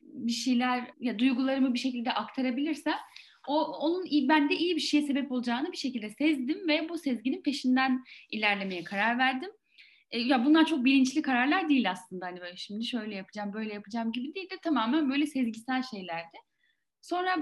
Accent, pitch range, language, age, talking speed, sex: native, 225-295 Hz, Turkish, 10-29, 165 wpm, female